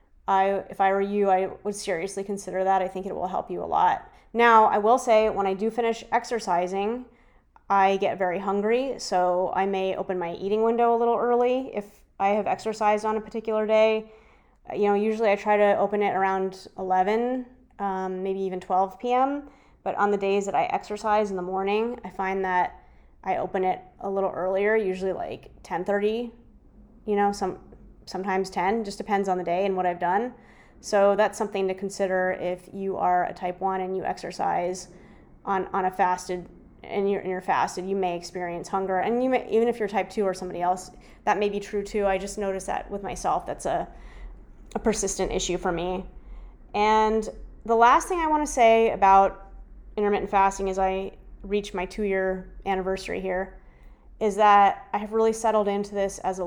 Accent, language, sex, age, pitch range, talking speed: American, English, female, 20-39, 190-215 Hz, 195 wpm